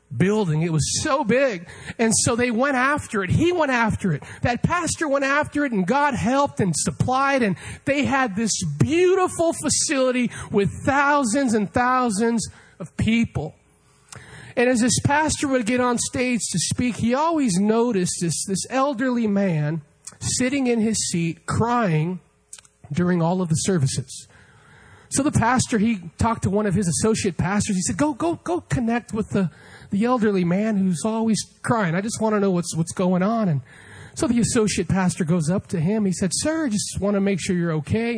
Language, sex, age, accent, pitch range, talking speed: English, male, 40-59, American, 170-245 Hz, 185 wpm